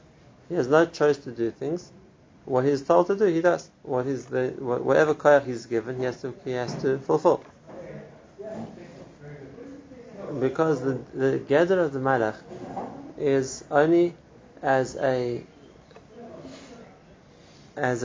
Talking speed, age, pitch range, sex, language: 130 wpm, 30-49, 125-155 Hz, male, English